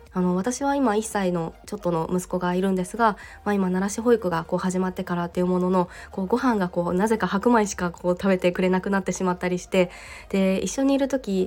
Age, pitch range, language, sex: 20-39, 185-215 Hz, Japanese, female